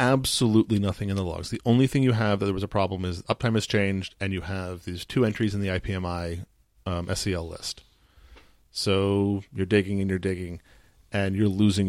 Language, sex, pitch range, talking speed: English, male, 95-120 Hz, 200 wpm